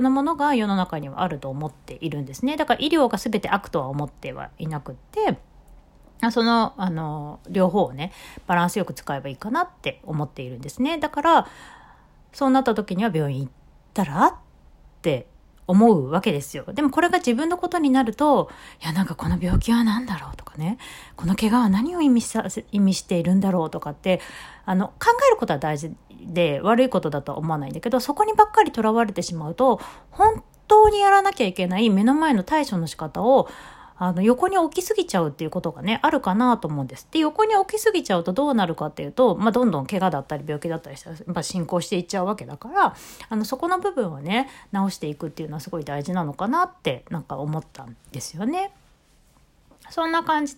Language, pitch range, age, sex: Japanese, 165-265 Hz, 40-59, female